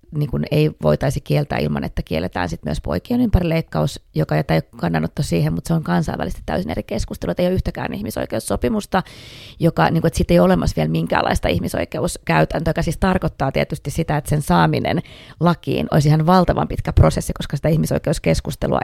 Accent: native